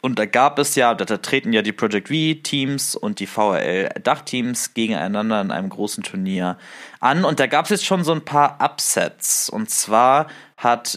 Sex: male